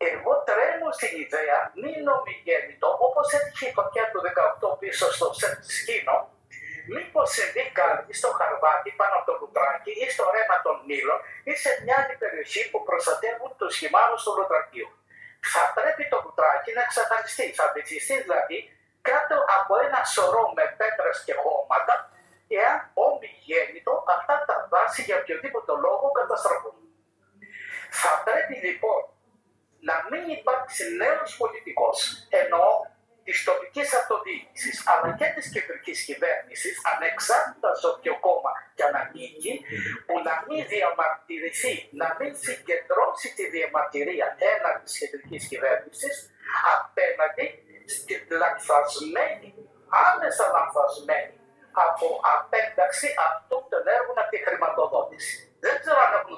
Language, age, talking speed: Greek, 50-69, 130 wpm